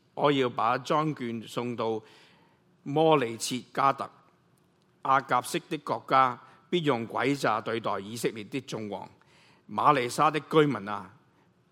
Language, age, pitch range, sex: Chinese, 50-69, 115-150 Hz, male